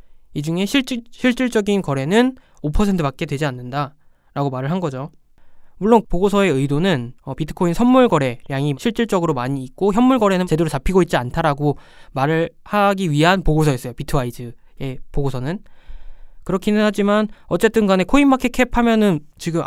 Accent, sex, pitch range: native, male, 145-210 Hz